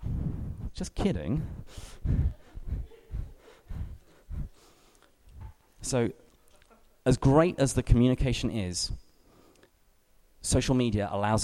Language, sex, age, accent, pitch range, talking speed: English, male, 30-49, British, 90-115 Hz, 65 wpm